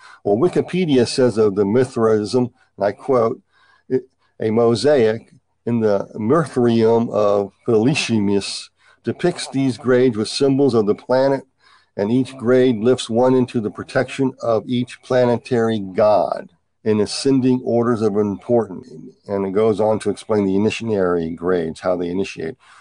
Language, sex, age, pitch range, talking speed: English, male, 50-69, 100-125 Hz, 140 wpm